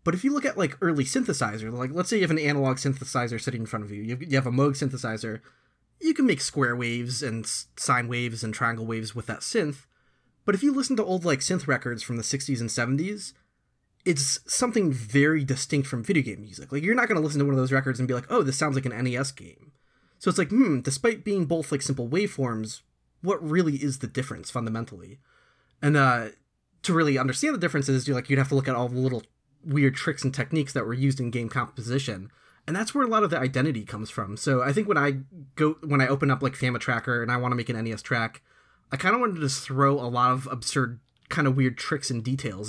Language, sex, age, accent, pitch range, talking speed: English, male, 20-39, American, 120-150 Hz, 245 wpm